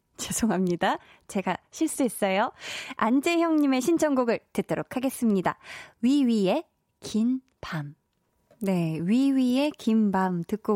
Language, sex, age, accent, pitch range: Korean, female, 20-39, native, 185-270 Hz